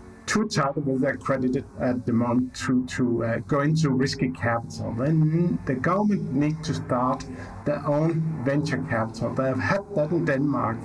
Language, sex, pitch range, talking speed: English, male, 125-155 Hz, 170 wpm